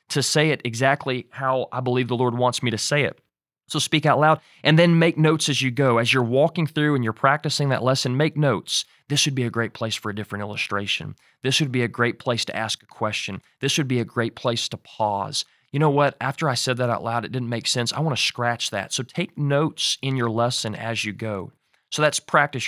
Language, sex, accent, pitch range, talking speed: English, male, American, 115-150 Hz, 250 wpm